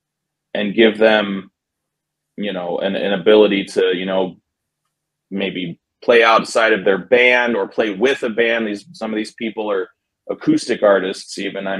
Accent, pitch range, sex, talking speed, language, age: American, 95-110 Hz, male, 165 wpm, English, 20-39